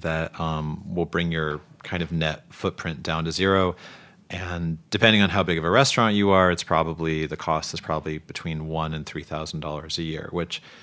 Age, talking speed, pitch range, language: 30-49, 205 wpm, 75-85 Hz, English